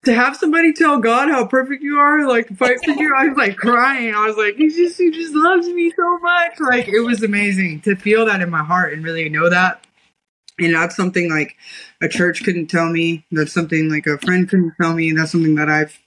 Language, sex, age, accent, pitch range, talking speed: English, female, 20-39, American, 155-200 Hz, 240 wpm